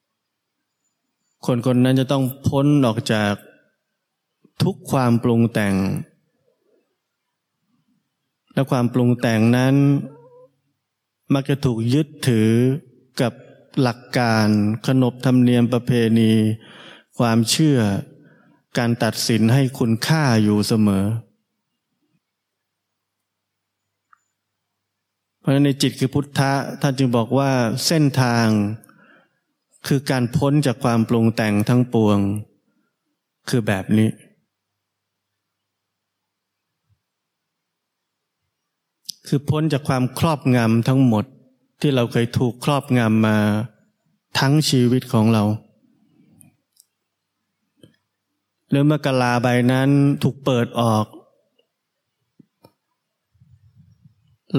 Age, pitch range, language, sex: 20-39, 110-135 Hz, Thai, male